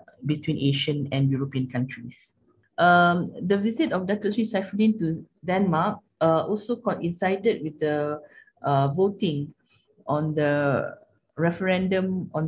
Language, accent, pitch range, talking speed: English, Malaysian, 150-185 Hz, 120 wpm